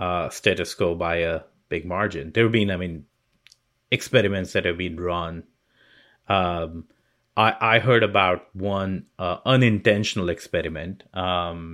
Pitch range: 85-105 Hz